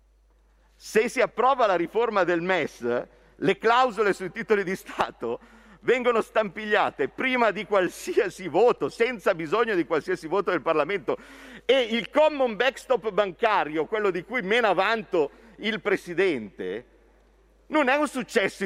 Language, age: Italian, 50-69